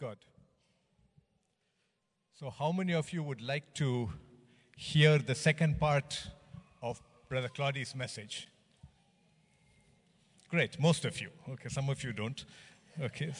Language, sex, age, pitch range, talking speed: English, male, 50-69, 135-170 Hz, 120 wpm